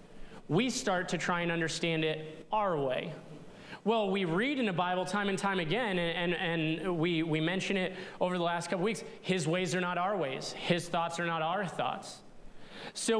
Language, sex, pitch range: English, male, 165-200 Hz